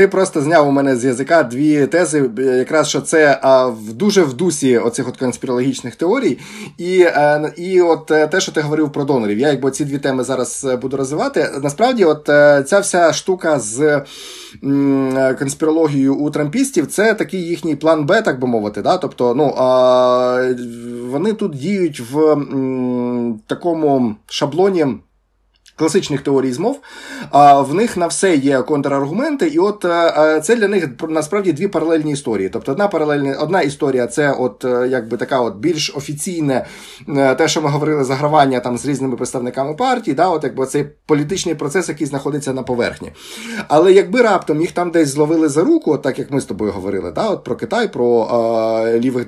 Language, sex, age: Ukrainian, male, 20-39